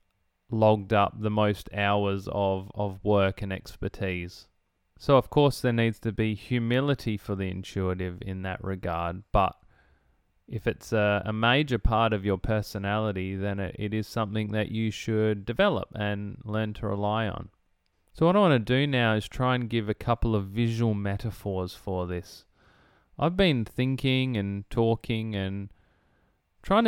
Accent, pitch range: Australian, 95-115 Hz